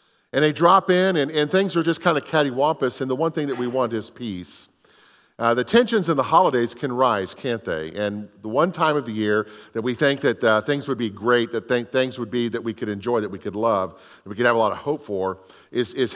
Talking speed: 265 wpm